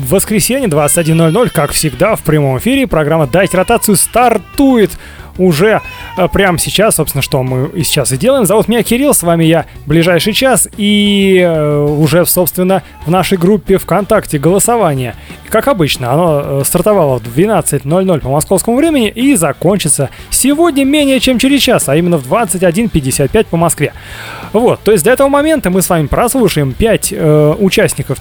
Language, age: Russian, 30-49